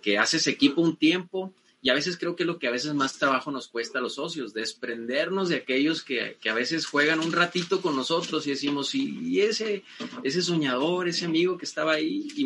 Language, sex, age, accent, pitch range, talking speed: Spanish, male, 30-49, Mexican, 125-170 Hz, 225 wpm